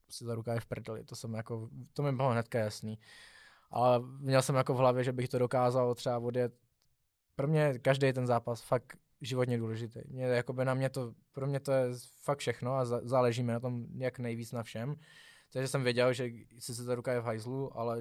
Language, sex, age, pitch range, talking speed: Czech, male, 20-39, 120-135 Hz, 215 wpm